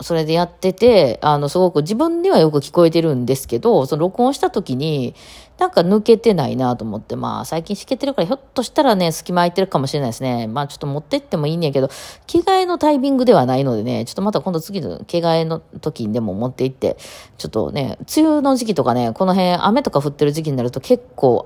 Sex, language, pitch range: female, Japanese, 125-195 Hz